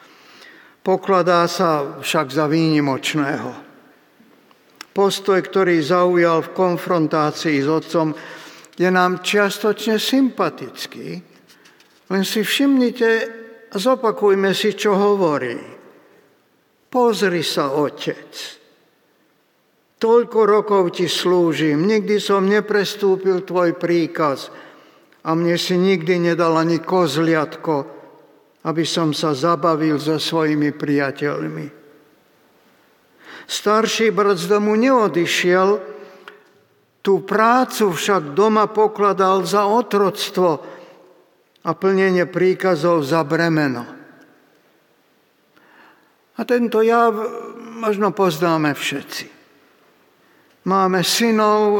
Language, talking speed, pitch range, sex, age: Slovak, 85 wpm, 165-205 Hz, male, 50-69